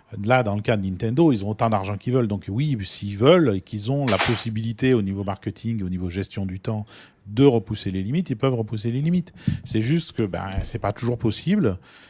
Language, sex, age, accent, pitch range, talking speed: French, male, 40-59, French, 95-115 Hz, 235 wpm